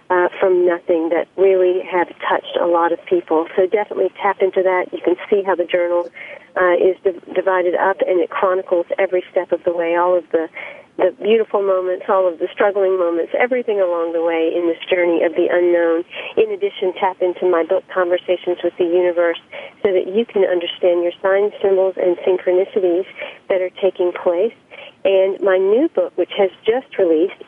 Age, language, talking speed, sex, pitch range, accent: 40-59, English, 190 wpm, female, 175-195 Hz, American